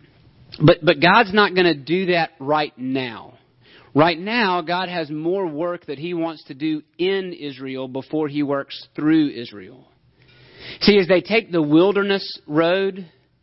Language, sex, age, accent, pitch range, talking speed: English, male, 40-59, American, 140-180 Hz, 155 wpm